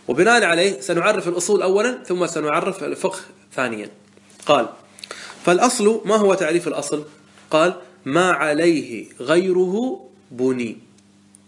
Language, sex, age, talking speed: Arabic, male, 30-49, 105 wpm